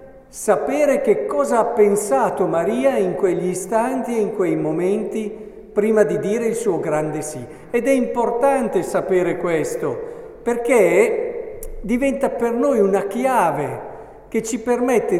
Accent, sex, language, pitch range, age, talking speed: native, male, Italian, 145-230 Hz, 50-69, 135 wpm